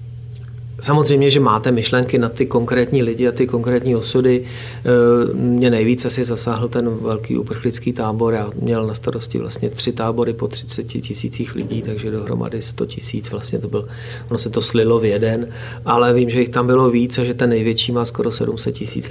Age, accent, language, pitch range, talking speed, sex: 40-59, native, Czech, 115-120 Hz, 185 wpm, male